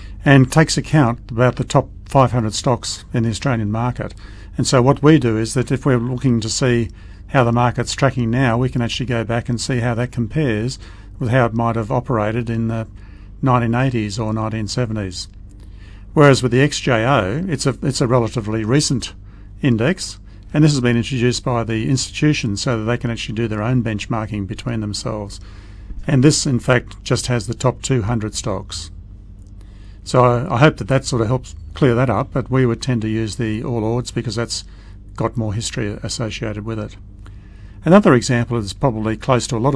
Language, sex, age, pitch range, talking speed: English, male, 50-69, 105-130 Hz, 190 wpm